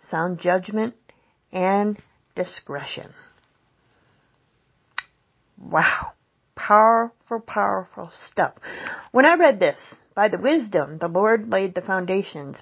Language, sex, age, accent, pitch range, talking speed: English, female, 40-59, American, 185-235 Hz, 95 wpm